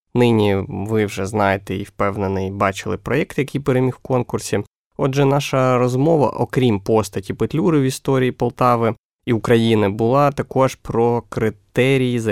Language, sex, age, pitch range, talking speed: Ukrainian, male, 20-39, 105-130 Hz, 135 wpm